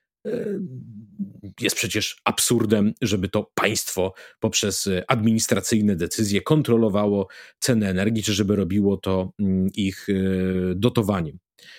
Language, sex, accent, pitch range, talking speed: Polish, male, native, 105-150 Hz, 90 wpm